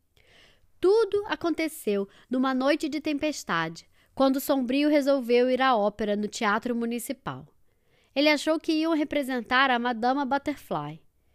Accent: Brazilian